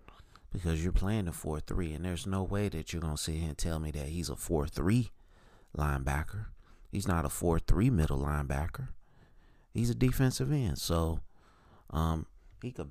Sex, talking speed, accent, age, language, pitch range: male, 180 wpm, American, 30-49, English, 80-105 Hz